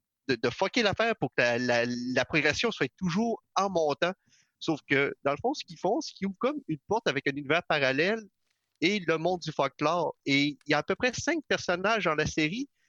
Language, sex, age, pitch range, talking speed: French, male, 40-59, 135-185 Hz, 230 wpm